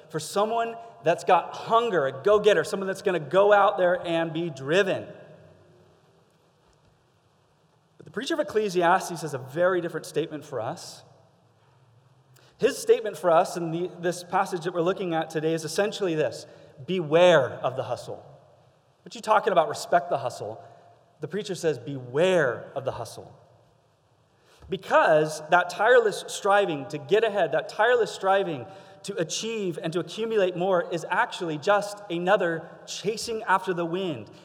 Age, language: 30-49, English